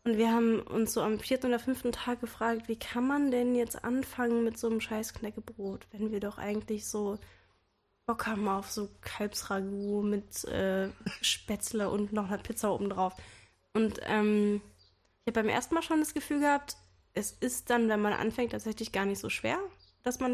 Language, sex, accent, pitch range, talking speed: German, female, German, 205-245 Hz, 190 wpm